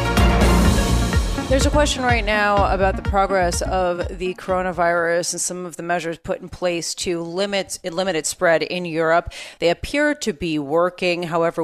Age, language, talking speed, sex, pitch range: 30-49, English, 160 wpm, female, 165-195 Hz